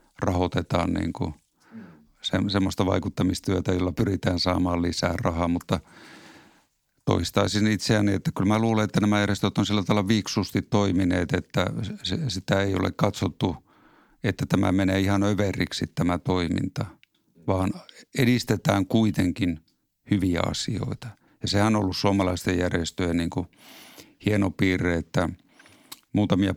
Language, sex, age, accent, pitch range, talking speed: Finnish, male, 50-69, native, 90-100 Hz, 120 wpm